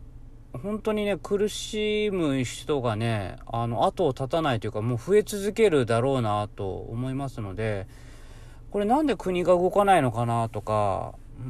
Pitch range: 120-195 Hz